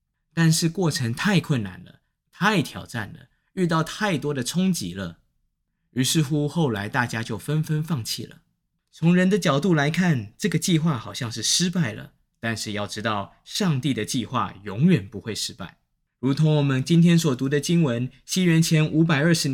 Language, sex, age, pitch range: Chinese, male, 20-39, 115-165 Hz